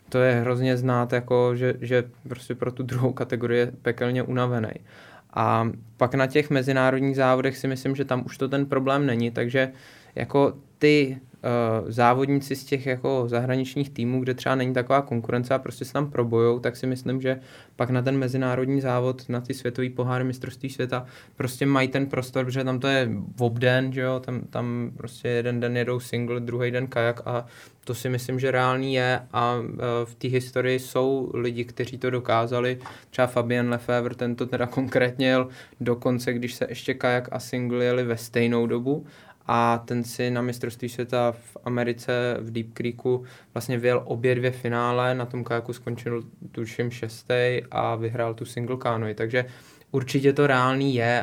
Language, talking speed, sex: Czech, 175 wpm, male